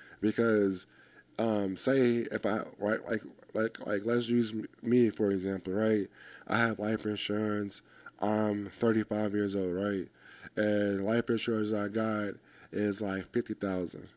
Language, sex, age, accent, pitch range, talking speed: English, male, 20-39, American, 105-115 Hz, 135 wpm